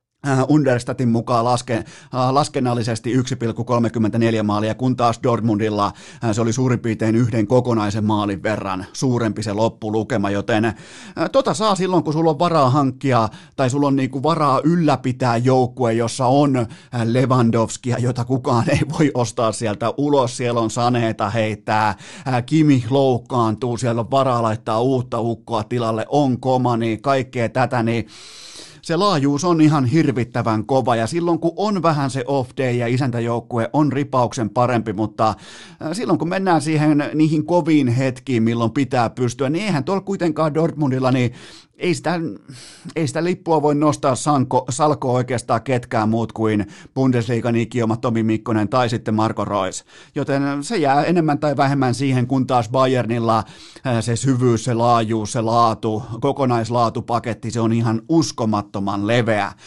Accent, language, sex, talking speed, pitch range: native, Finnish, male, 150 wpm, 115-140 Hz